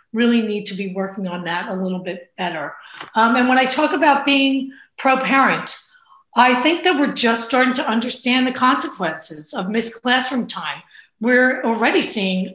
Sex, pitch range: female, 210-270 Hz